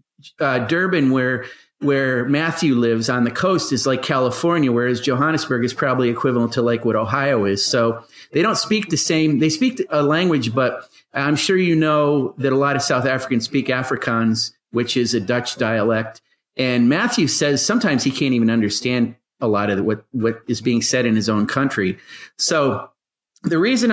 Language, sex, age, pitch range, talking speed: English, male, 40-59, 120-155 Hz, 185 wpm